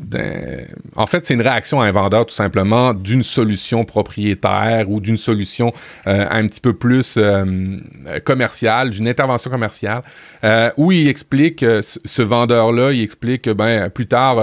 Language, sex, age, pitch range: French, male, 30-49, 105-125 Hz